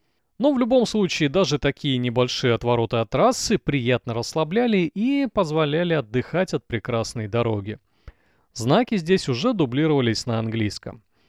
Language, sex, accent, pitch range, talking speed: Russian, male, native, 115-165 Hz, 130 wpm